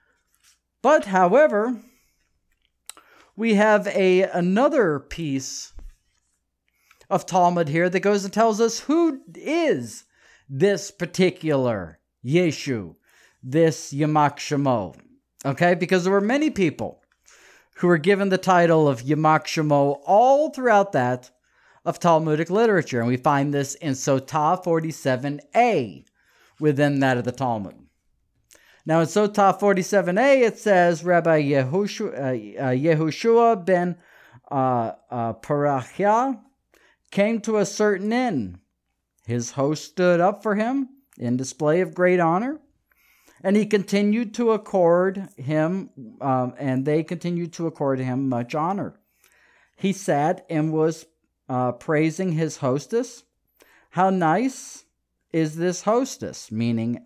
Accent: American